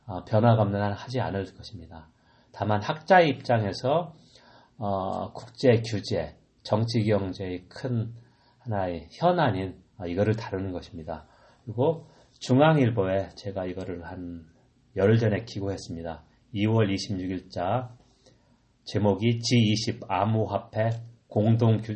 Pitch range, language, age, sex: 95-120 Hz, Korean, 30-49, male